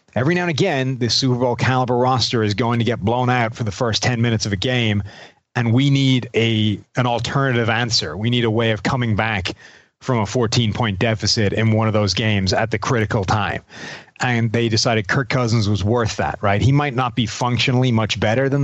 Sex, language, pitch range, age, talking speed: male, English, 110-130 Hz, 30-49, 215 wpm